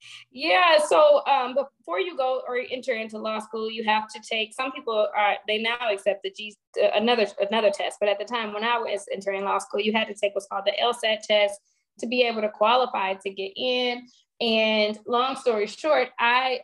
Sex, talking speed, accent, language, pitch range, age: female, 210 wpm, American, English, 210-265 Hz, 20-39